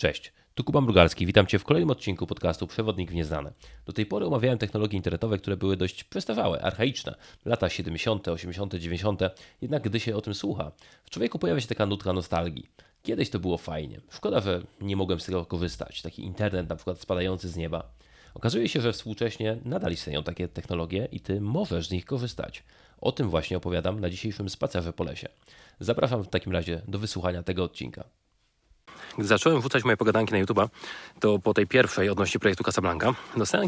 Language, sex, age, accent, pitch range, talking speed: Polish, male, 30-49, native, 95-125 Hz, 185 wpm